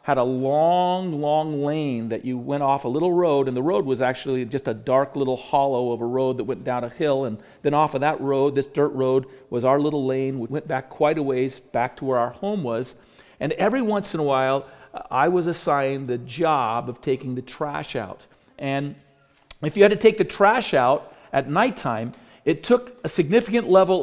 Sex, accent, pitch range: male, American, 140-210 Hz